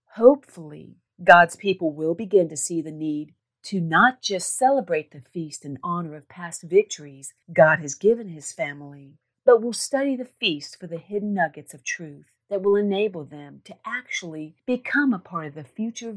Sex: female